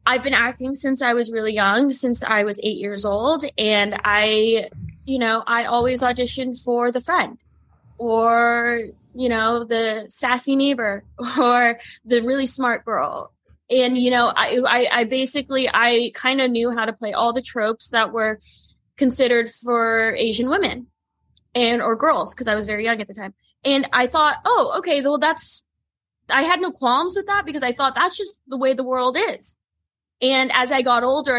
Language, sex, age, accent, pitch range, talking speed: English, female, 10-29, American, 220-260 Hz, 185 wpm